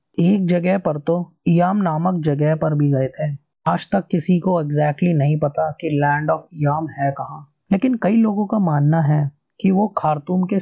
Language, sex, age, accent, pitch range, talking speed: Hindi, male, 30-49, native, 150-180 Hz, 190 wpm